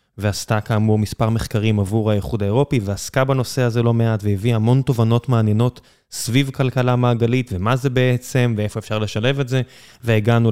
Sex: male